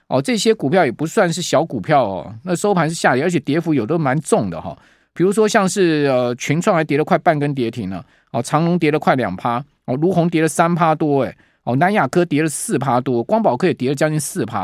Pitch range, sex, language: 125-170 Hz, male, Chinese